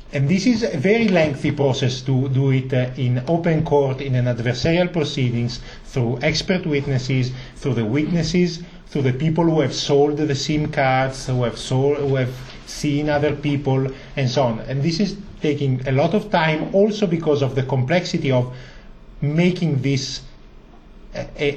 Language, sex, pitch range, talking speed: English, male, 125-160 Hz, 165 wpm